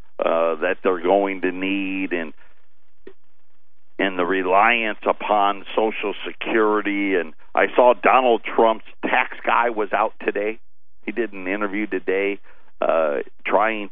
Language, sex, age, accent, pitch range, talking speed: English, male, 50-69, American, 90-135 Hz, 130 wpm